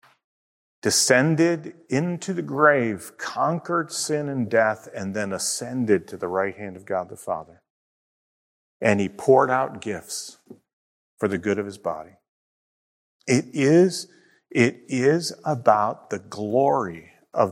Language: English